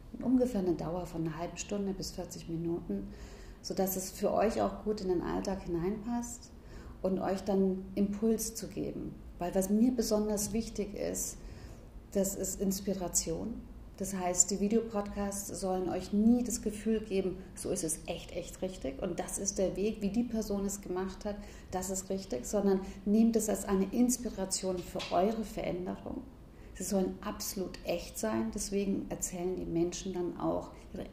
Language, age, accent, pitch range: German, 40-59, German, 175-205 Hz